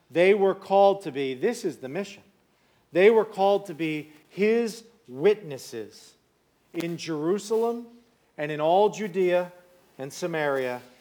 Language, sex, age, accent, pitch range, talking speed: English, male, 40-59, American, 175-230 Hz, 130 wpm